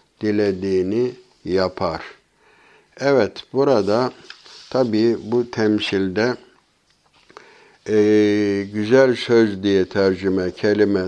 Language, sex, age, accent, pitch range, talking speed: Turkish, male, 60-79, native, 95-110 Hz, 70 wpm